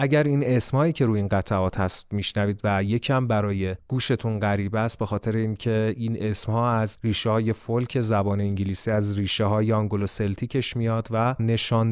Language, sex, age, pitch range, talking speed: Persian, male, 30-49, 105-125 Hz, 175 wpm